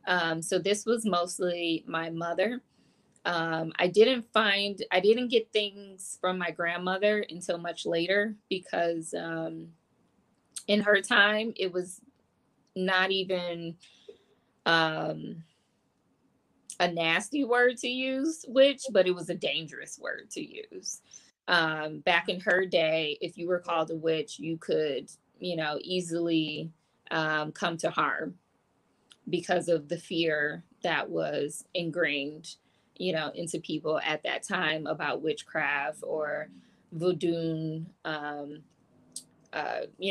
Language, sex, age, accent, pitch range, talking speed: English, female, 20-39, American, 165-215 Hz, 130 wpm